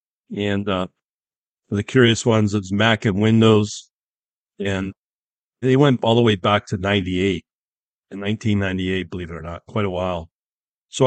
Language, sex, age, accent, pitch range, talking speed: English, male, 40-59, American, 100-120 Hz, 150 wpm